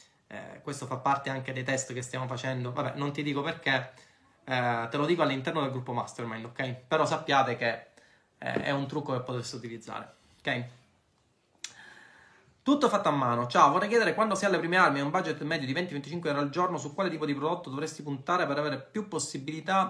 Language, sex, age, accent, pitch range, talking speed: Italian, male, 20-39, native, 135-170 Hz, 200 wpm